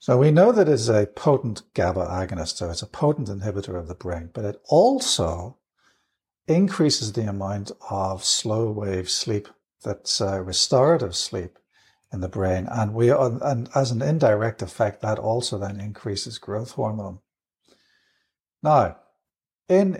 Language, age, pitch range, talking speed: English, 60-79, 100-130 Hz, 145 wpm